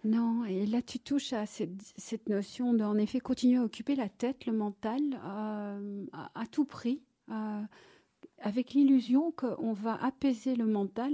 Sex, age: female, 50-69